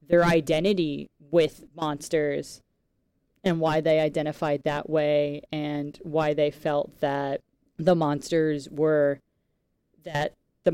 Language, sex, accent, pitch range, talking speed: English, female, American, 145-165 Hz, 110 wpm